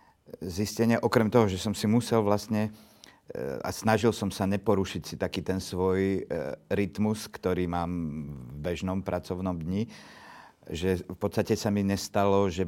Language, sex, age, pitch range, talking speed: Slovak, male, 50-69, 85-100 Hz, 145 wpm